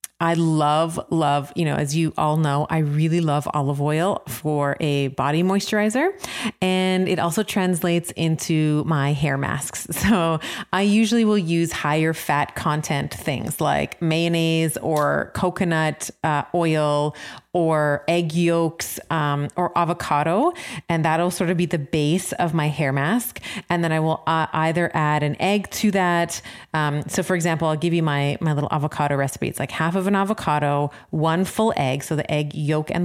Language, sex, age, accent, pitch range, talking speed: English, female, 30-49, American, 150-180 Hz, 175 wpm